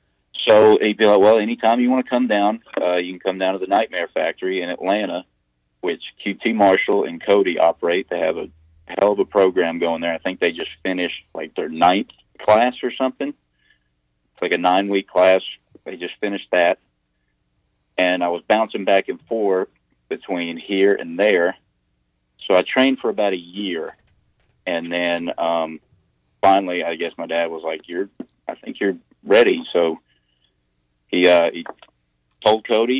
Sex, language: male, English